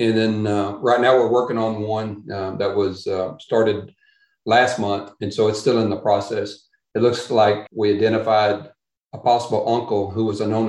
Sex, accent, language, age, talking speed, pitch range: male, American, English, 40-59, 195 wpm, 105-120 Hz